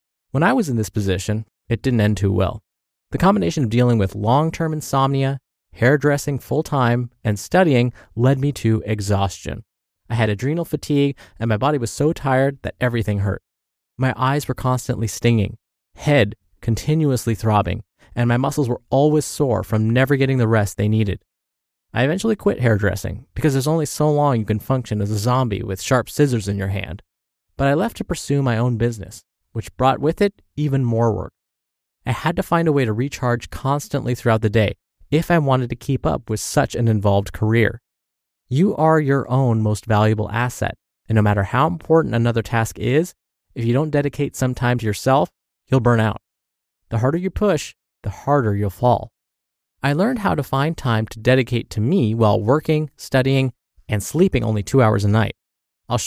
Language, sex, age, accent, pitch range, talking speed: English, male, 20-39, American, 105-140 Hz, 185 wpm